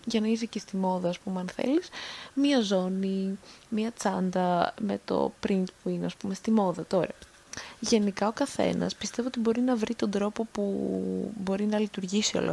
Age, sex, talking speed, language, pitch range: 20-39, female, 185 wpm, Greek, 195-255 Hz